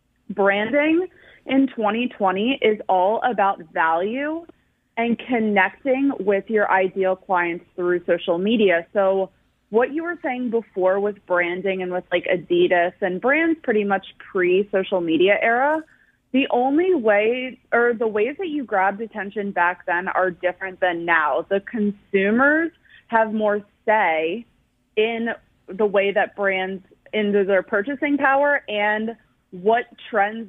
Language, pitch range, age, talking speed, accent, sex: English, 185-230 Hz, 20-39, 135 wpm, American, female